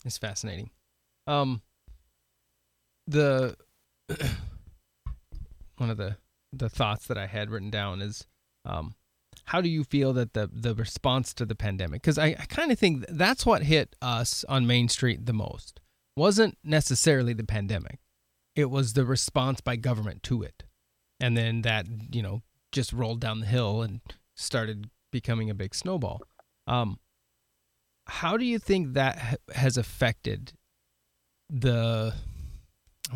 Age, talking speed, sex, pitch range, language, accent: 30-49, 145 wpm, male, 100-140 Hz, English, American